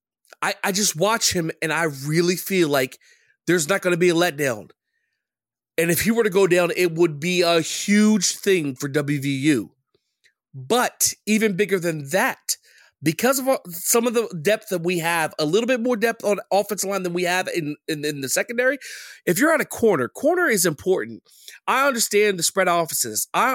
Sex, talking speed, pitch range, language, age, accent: male, 195 wpm, 170-220 Hz, English, 30-49, American